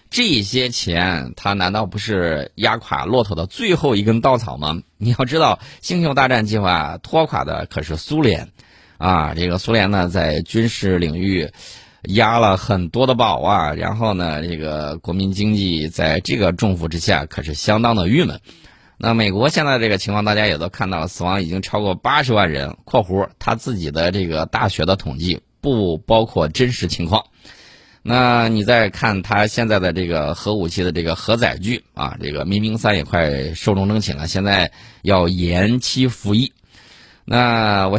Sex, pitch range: male, 90-120 Hz